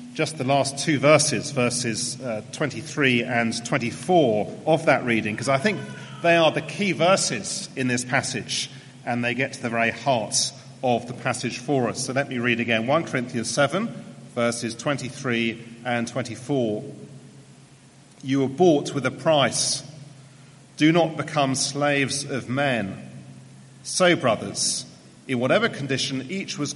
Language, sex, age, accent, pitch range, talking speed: English, male, 40-59, British, 125-150 Hz, 150 wpm